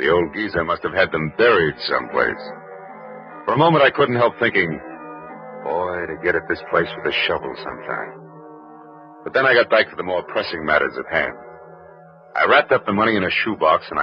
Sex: male